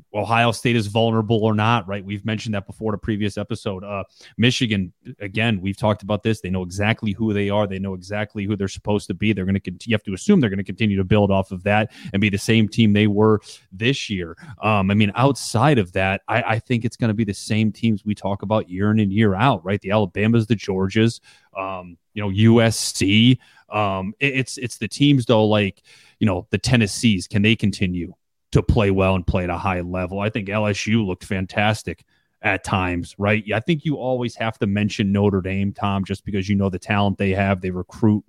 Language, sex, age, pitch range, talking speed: English, male, 30-49, 95-115 Hz, 225 wpm